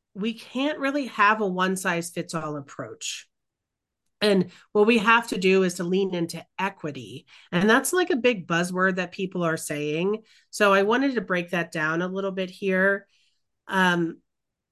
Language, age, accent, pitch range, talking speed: English, 30-49, American, 165-200 Hz, 165 wpm